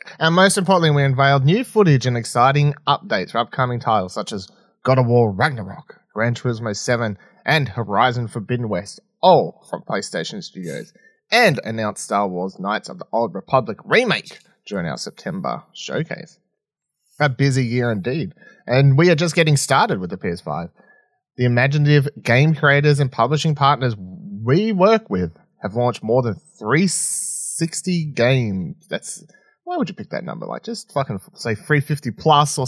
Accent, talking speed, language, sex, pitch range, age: Australian, 160 wpm, English, male, 115-160 Hz, 30-49